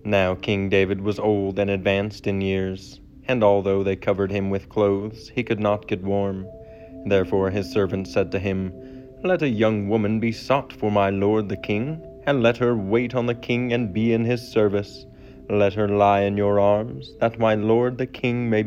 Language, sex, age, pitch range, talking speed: English, male, 30-49, 100-115 Hz, 200 wpm